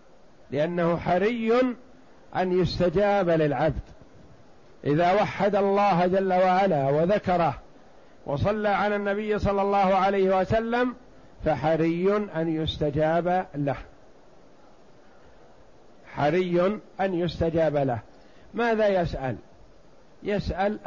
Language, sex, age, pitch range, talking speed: Arabic, male, 50-69, 175-215 Hz, 85 wpm